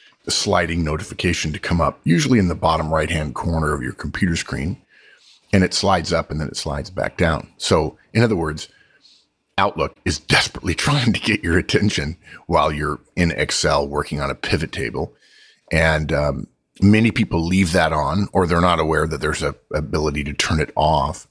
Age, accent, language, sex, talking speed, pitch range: 50-69, American, English, male, 185 wpm, 75-90 Hz